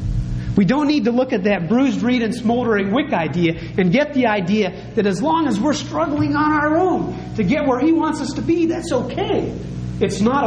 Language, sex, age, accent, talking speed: English, male, 40-59, American, 220 wpm